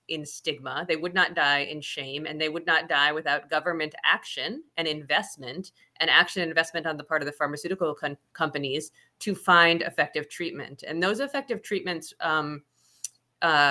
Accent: American